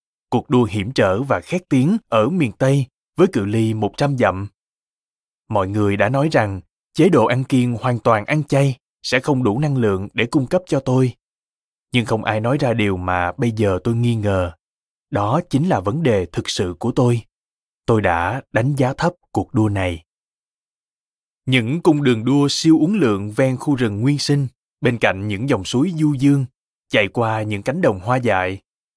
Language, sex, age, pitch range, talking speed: Vietnamese, male, 20-39, 105-140 Hz, 195 wpm